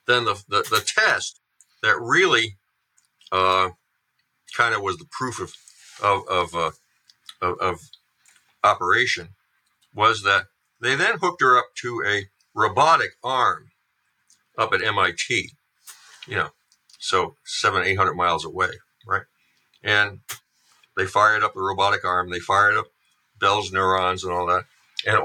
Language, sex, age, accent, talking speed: English, male, 50-69, American, 140 wpm